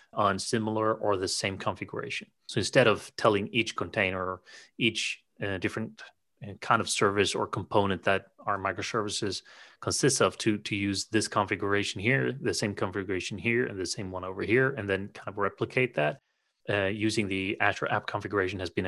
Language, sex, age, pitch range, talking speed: English, male, 30-49, 95-115 Hz, 180 wpm